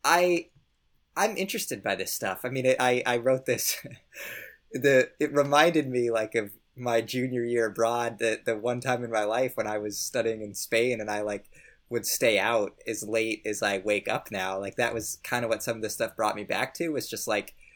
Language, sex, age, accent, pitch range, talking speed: English, male, 20-39, American, 100-130 Hz, 225 wpm